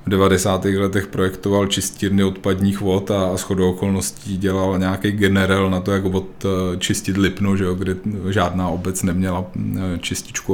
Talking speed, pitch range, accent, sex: 150 wpm, 95-100 Hz, native, male